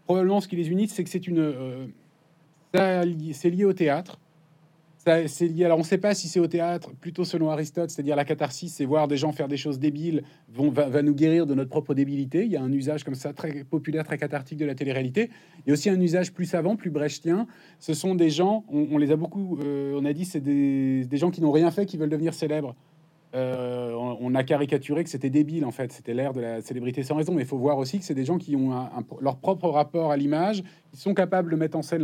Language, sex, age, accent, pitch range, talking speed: French, male, 30-49, French, 145-175 Hz, 260 wpm